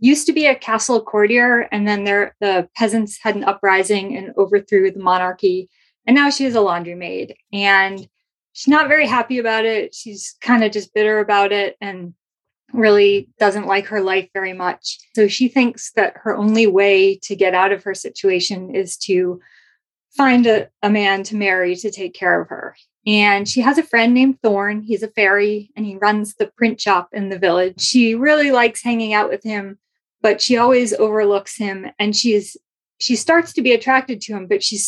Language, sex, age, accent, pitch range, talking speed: English, female, 20-39, American, 200-240 Hz, 195 wpm